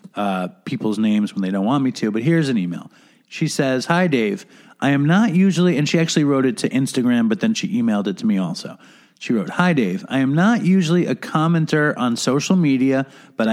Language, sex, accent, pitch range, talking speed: English, male, American, 130-180 Hz, 220 wpm